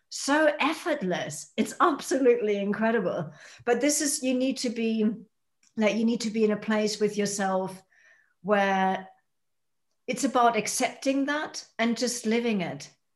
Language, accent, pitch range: English, British, 195-245 Hz